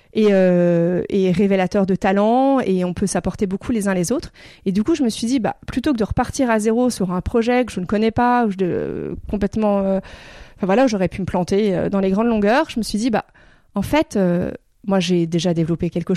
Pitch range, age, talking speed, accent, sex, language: 195-255 Hz, 30-49, 250 wpm, French, female, French